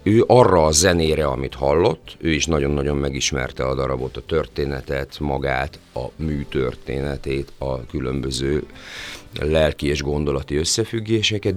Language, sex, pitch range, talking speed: Hungarian, male, 70-85 Hz, 120 wpm